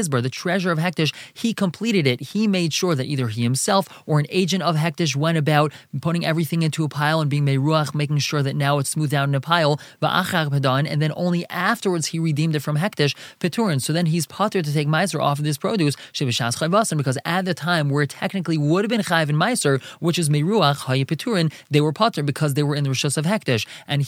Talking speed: 215 wpm